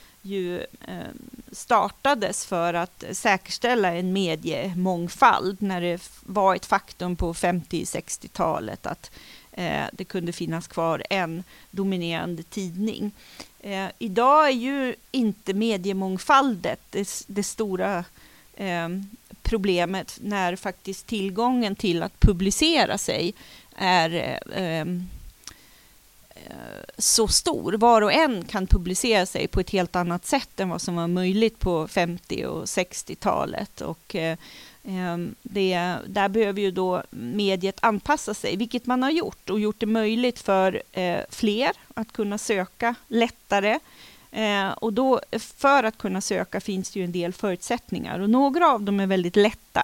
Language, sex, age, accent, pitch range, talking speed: Swedish, female, 40-59, native, 180-225 Hz, 120 wpm